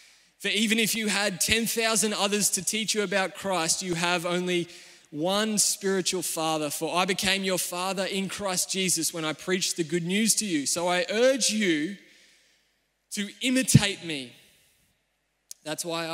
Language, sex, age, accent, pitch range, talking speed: English, male, 20-39, Australian, 160-210 Hz, 160 wpm